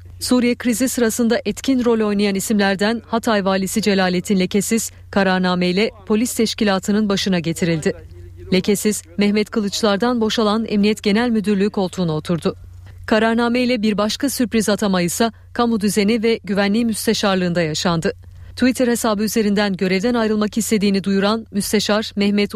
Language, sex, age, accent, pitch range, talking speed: Turkish, female, 40-59, native, 185-225 Hz, 120 wpm